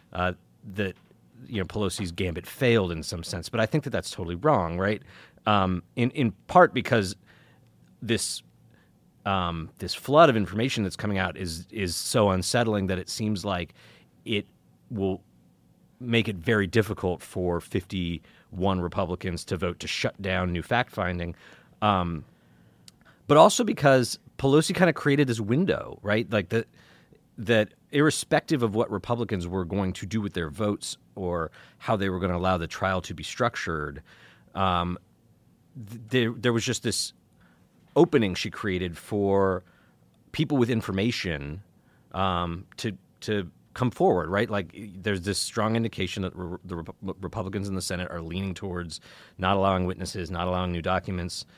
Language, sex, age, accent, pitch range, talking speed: English, male, 30-49, American, 90-110 Hz, 160 wpm